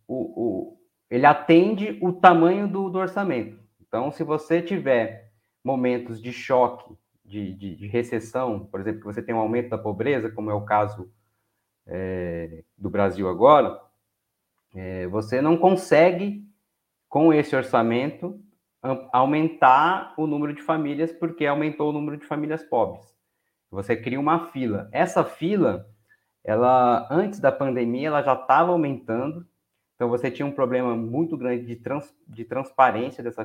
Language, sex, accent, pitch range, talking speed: English, male, Brazilian, 115-155 Hz, 140 wpm